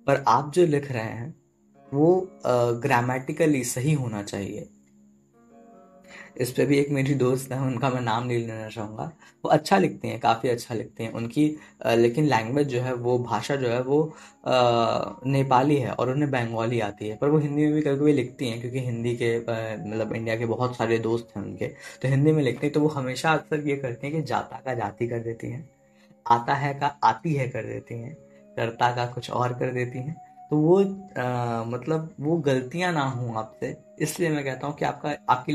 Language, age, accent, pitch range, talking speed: Hindi, 10-29, native, 115-145 Hz, 200 wpm